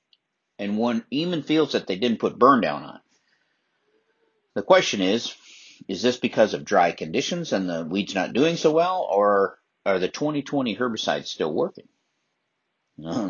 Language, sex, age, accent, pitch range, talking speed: English, male, 50-69, American, 95-135 Hz, 160 wpm